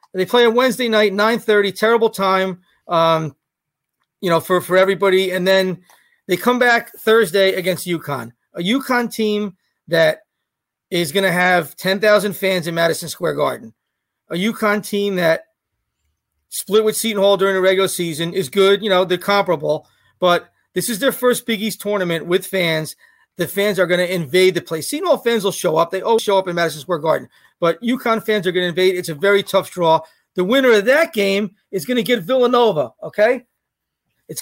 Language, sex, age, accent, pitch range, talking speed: English, male, 40-59, American, 180-225 Hz, 190 wpm